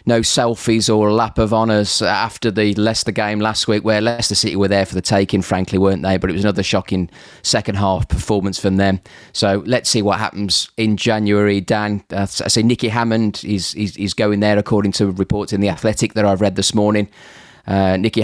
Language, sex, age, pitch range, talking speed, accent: English, male, 30-49, 100-120 Hz, 205 wpm, British